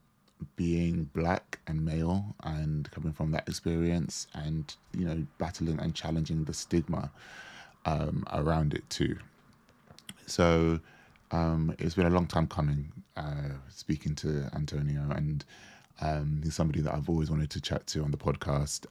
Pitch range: 75-80 Hz